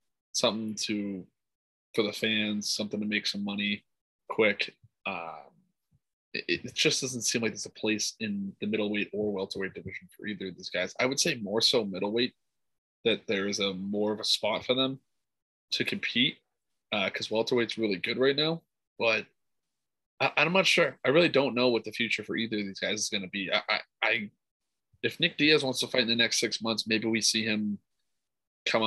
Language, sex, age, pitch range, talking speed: English, male, 20-39, 105-125 Hz, 200 wpm